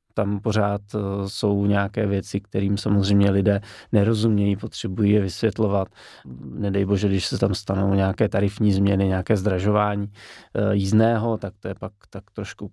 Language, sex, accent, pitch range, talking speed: Czech, male, native, 95-110 Hz, 140 wpm